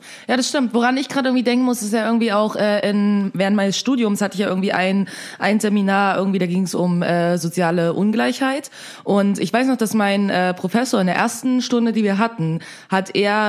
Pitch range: 170-220 Hz